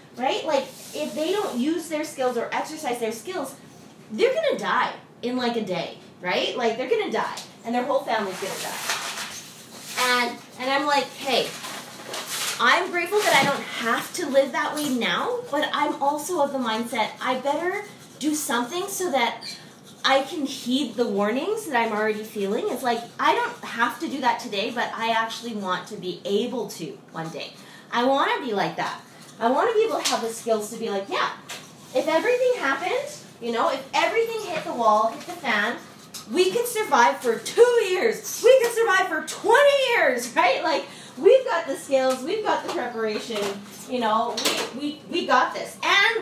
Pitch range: 225-305 Hz